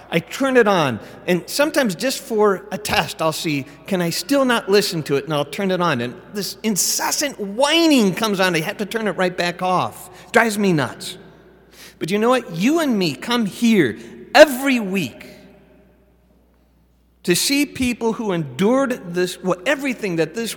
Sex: male